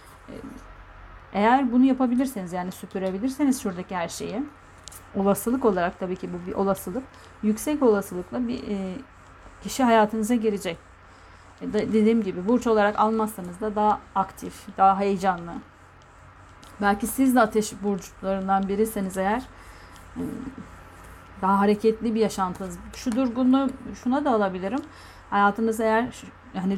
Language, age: Turkish, 40-59